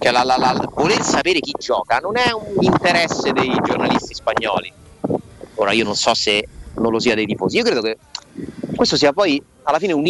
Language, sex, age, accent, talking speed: Italian, male, 30-49, native, 200 wpm